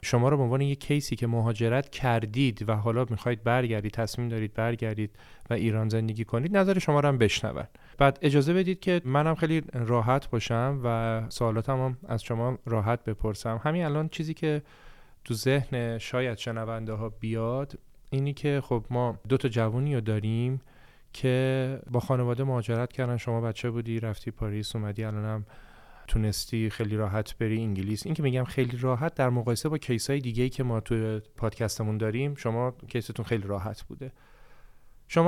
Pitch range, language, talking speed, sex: 115-135 Hz, Persian, 165 wpm, male